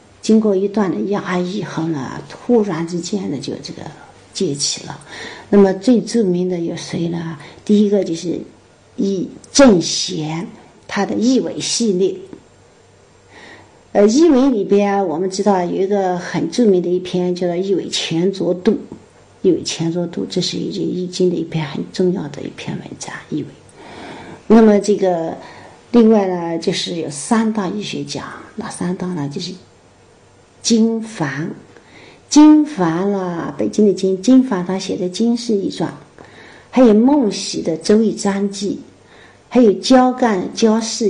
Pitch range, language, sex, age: 175-215 Hz, Chinese, female, 50-69